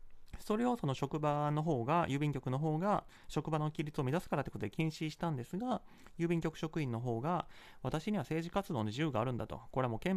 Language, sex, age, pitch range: Japanese, male, 30-49, 120-180 Hz